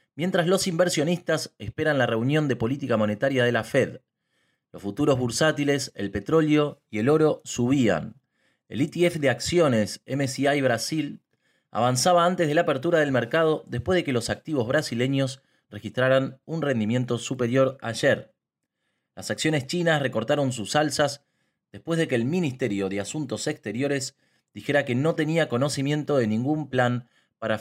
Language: Spanish